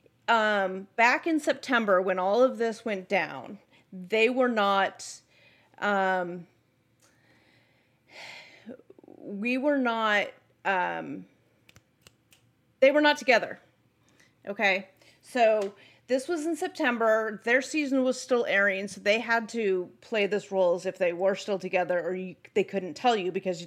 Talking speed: 130 wpm